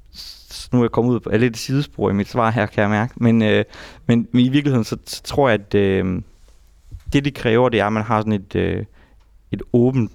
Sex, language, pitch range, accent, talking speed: male, Danish, 100-120 Hz, native, 240 wpm